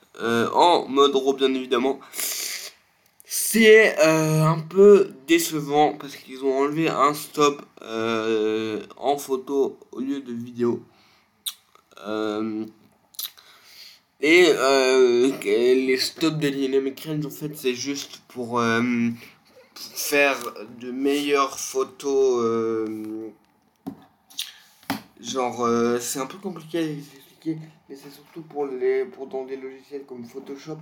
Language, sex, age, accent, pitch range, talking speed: French, male, 20-39, French, 120-150 Hz, 115 wpm